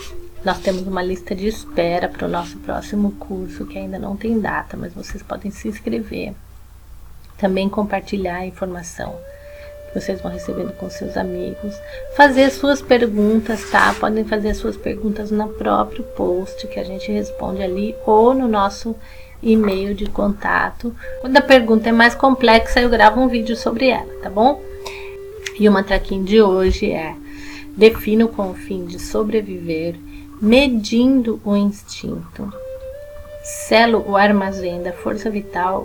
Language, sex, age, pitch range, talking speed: Portuguese, female, 30-49, 185-240 Hz, 150 wpm